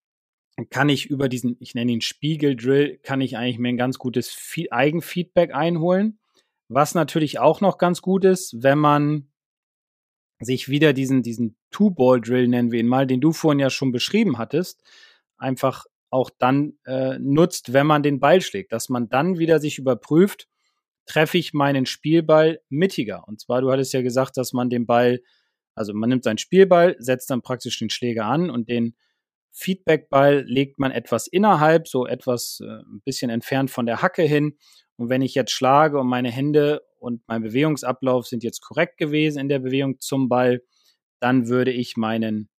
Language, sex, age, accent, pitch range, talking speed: German, male, 30-49, German, 125-155 Hz, 175 wpm